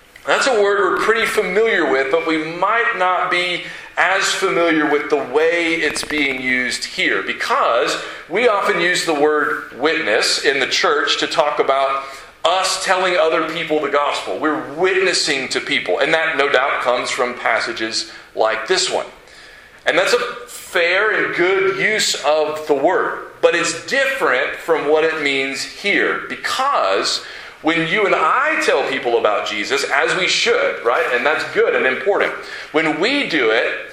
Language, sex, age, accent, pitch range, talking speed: English, male, 40-59, American, 135-215 Hz, 165 wpm